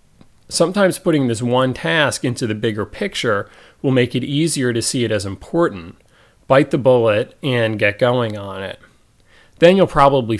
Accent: American